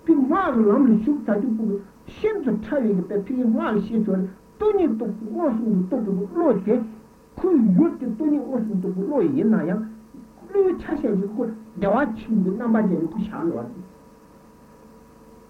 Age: 60-79